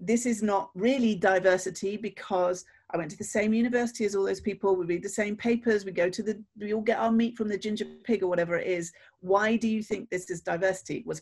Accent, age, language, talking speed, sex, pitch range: British, 40-59, English, 245 wpm, female, 180-230 Hz